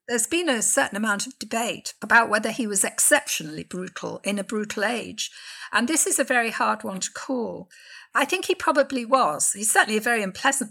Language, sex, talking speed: English, female, 200 wpm